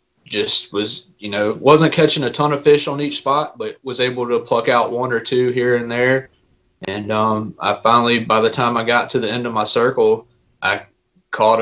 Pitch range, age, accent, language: 110-130 Hz, 20-39, American, English